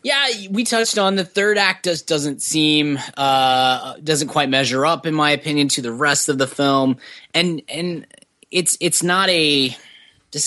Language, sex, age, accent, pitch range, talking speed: English, male, 20-39, American, 115-150 Hz, 180 wpm